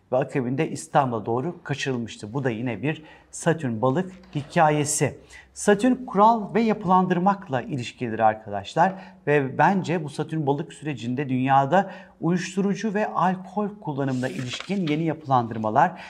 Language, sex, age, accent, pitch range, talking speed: Turkish, male, 40-59, native, 125-170 Hz, 120 wpm